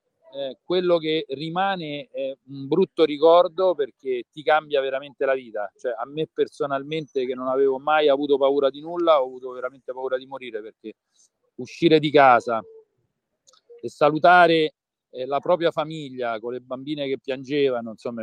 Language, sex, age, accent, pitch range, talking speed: Italian, male, 40-59, native, 130-180 Hz, 160 wpm